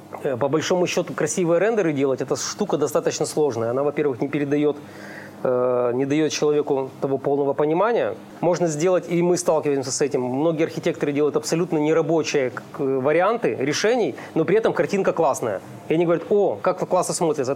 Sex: male